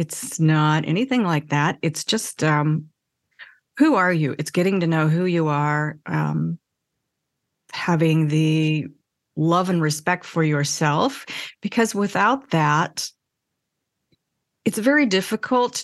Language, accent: English, American